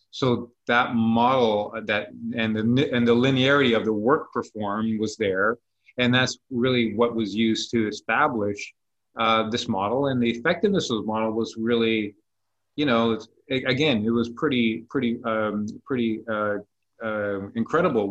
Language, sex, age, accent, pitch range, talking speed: English, male, 30-49, American, 110-125 Hz, 160 wpm